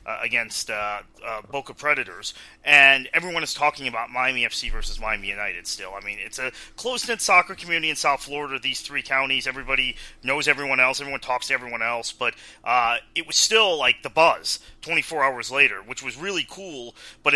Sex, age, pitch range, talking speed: male, 30-49, 120-175 Hz, 195 wpm